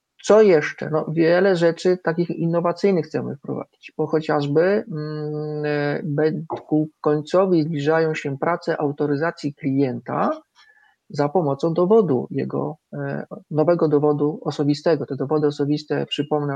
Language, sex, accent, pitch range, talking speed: Polish, male, native, 145-170 Hz, 105 wpm